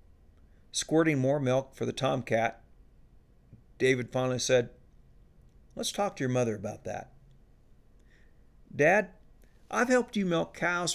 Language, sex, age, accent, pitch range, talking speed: English, male, 50-69, American, 110-145 Hz, 120 wpm